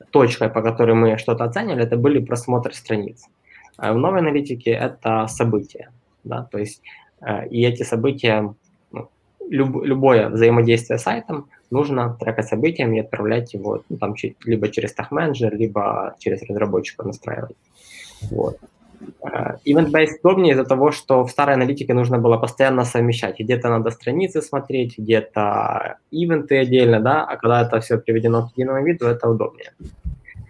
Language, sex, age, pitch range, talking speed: Russian, male, 20-39, 115-135 Hz, 145 wpm